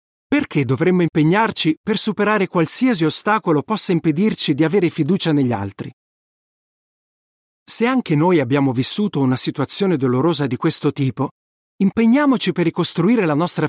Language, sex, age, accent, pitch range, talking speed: Italian, male, 40-59, native, 145-200 Hz, 130 wpm